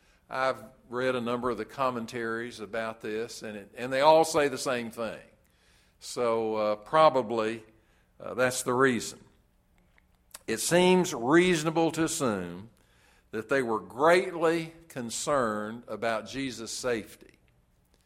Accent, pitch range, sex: American, 105-130 Hz, male